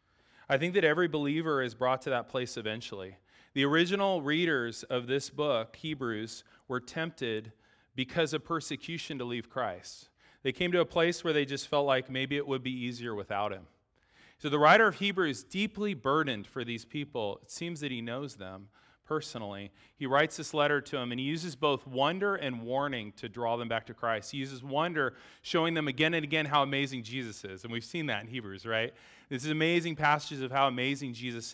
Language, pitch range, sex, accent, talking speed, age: English, 125-160 Hz, male, American, 205 wpm, 30-49